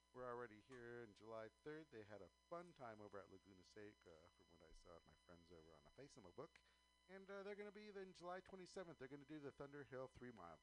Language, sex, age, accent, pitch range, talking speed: English, male, 50-69, American, 100-140 Hz, 255 wpm